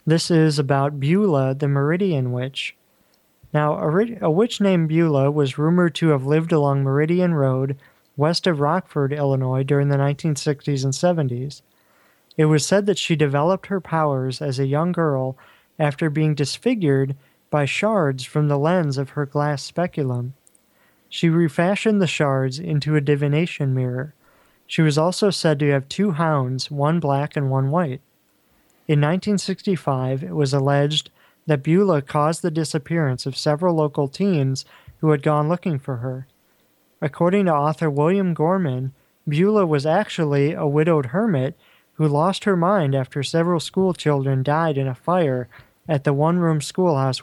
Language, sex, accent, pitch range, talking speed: English, male, American, 140-170 Hz, 155 wpm